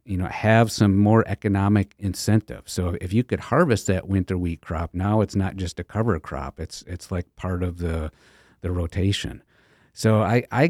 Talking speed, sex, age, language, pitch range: 190 wpm, male, 50-69, English, 95-110 Hz